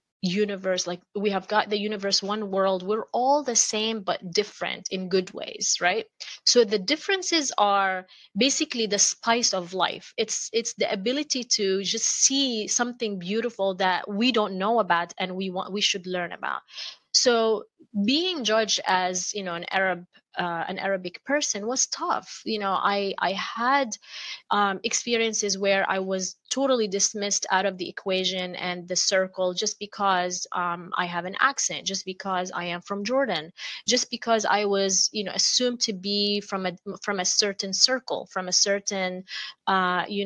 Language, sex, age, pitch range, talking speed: English, female, 20-39, 185-230 Hz, 170 wpm